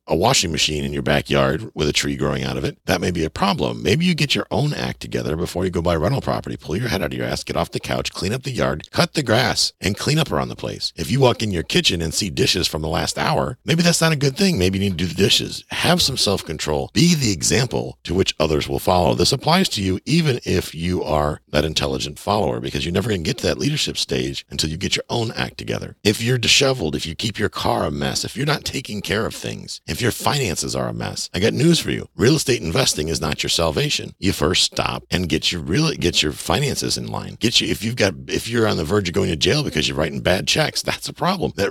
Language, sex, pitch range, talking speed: English, male, 75-130 Hz, 275 wpm